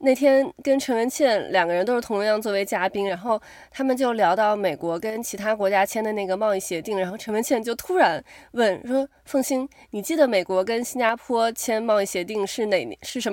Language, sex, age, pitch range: Chinese, female, 20-39, 205-275 Hz